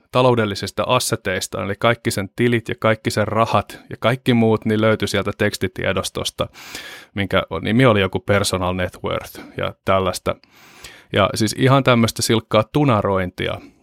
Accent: native